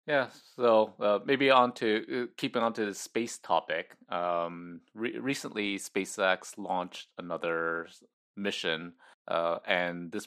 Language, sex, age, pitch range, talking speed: English, male, 30-49, 80-100 Hz, 135 wpm